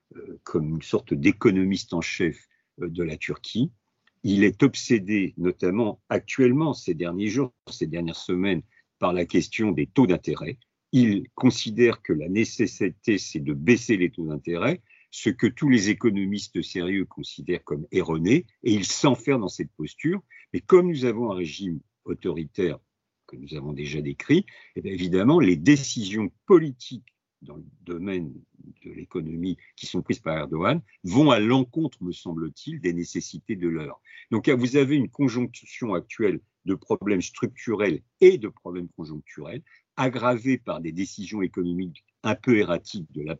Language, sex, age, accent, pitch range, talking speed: French, male, 50-69, French, 90-125 Hz, 150 wpm